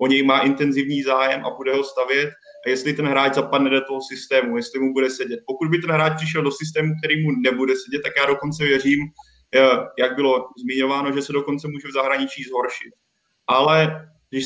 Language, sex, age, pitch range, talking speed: Czech, male, 20-39, 135-165 Hz, 200 wpm